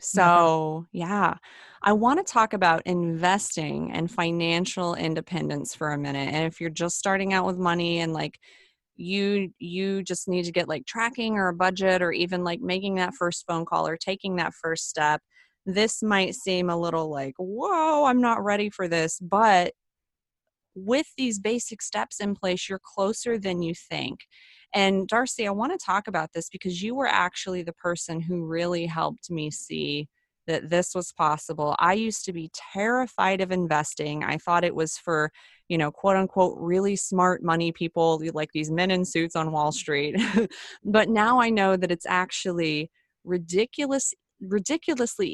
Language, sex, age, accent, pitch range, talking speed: English, female, 30-49, American, 165-200 Hz, 175 wpm